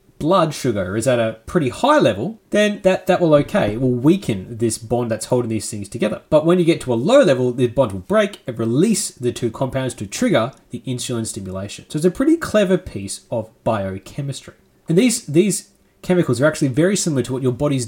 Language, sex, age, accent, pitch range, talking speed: English, male, 30-49, Australian, 115-155 Hz, 220 wpm